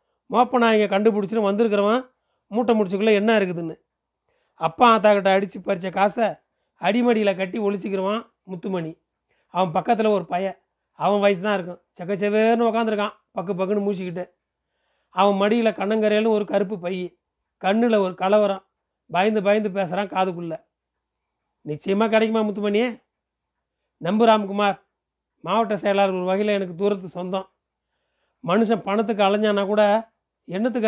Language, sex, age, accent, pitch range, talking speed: Tamil, male, 30-49, native, 190-225 Hz, 120 wpm